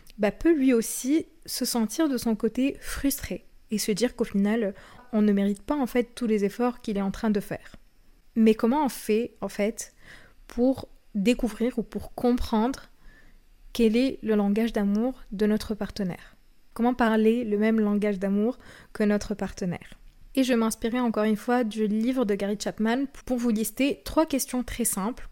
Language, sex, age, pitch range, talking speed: French, female, 20-39, 210-245 Hz, 180 wpm